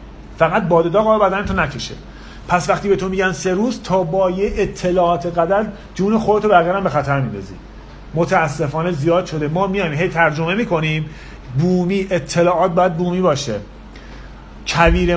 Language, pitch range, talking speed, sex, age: Persian, 165-215 Hz, 150 wpm, male, 40-59